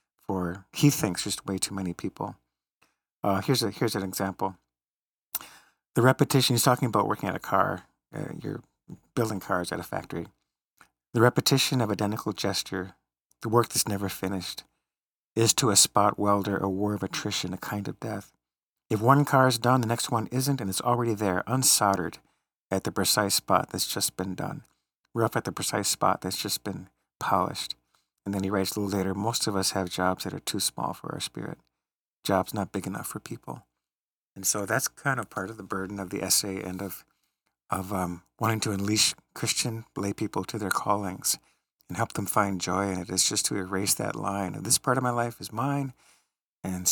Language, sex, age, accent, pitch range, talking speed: English, male, 50-69, American, 95-115 Hz, 200 wpm